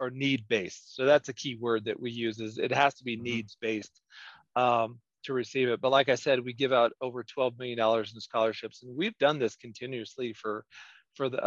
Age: 40-59